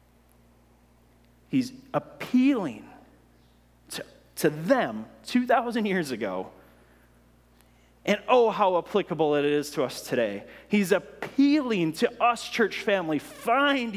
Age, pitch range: 30-49, 140-205 Hz